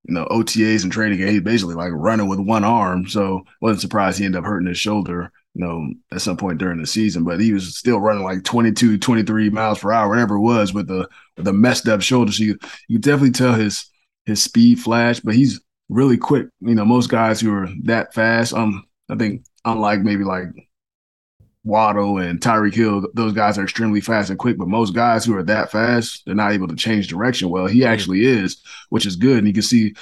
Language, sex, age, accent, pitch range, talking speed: English, male, 20-39, American, 95-110 Hz, 225 wpm